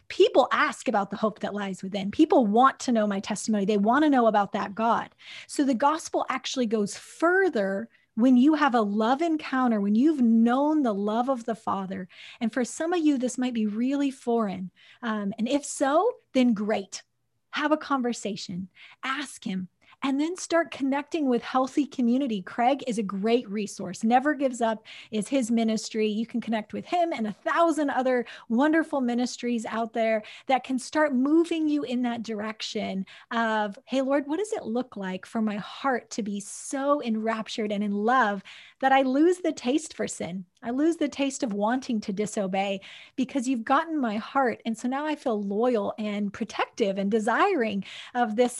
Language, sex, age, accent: English, female, 30-49, American